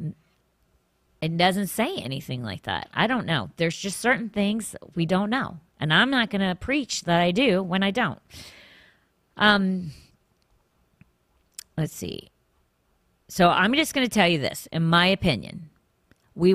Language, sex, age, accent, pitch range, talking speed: English, female, 40-59, American, 150-190 Hz, 155 wpm